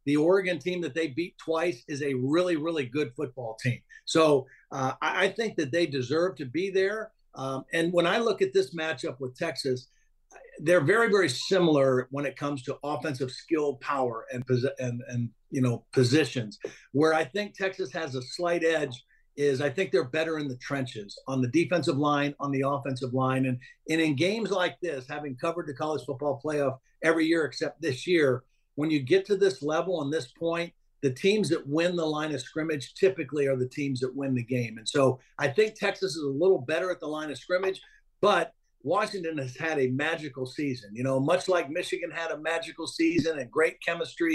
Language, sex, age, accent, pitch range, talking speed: English, male, 50-69, American, 135-170 Hz, 205 wpm